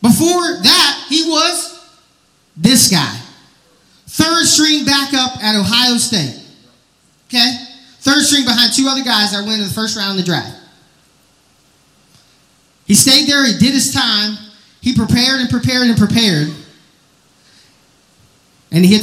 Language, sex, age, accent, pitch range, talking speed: English, male, 30-49, American, 225-295 Hz, 140 wpm